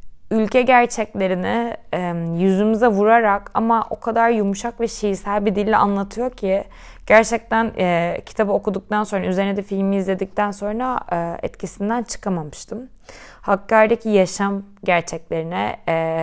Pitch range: 185-225 Hz